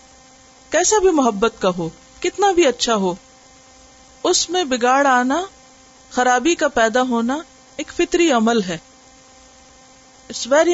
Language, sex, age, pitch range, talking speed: Urdu, female, 50-69, 230-260 Hz, 125 wpm